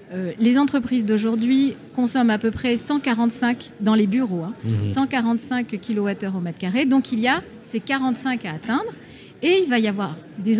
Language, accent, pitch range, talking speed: French, French, 205-255 Hz, 180 wpm